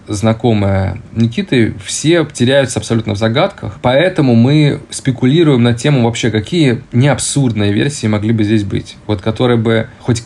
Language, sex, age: Russian, male, 20-39